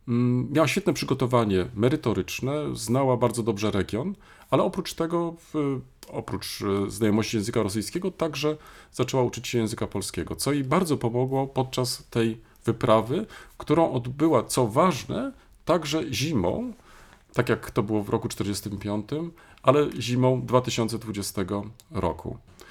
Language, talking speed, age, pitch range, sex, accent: Polish, 120 wpm, 40-59, 110-155 Hz, male, native